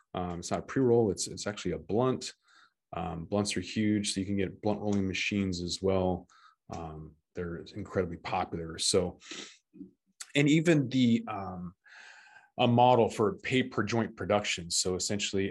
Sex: male